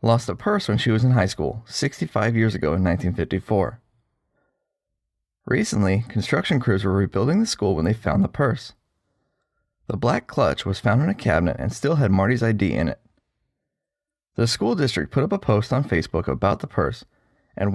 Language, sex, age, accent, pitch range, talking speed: English, male, 30-49, American, 95-130 Hz, 185 wpm